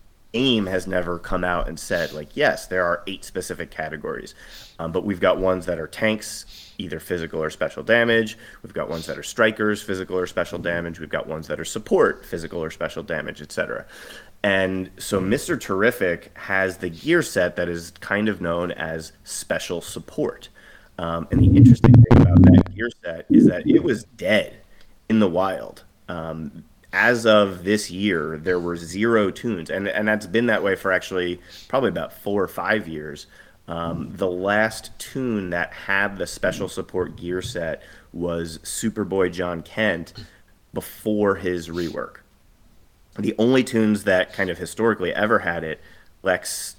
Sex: male